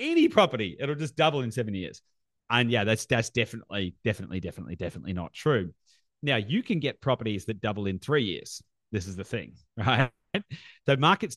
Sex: male